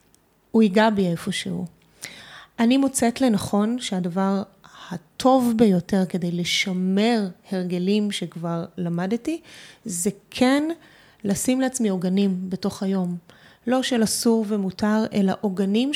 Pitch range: 190-230 Hz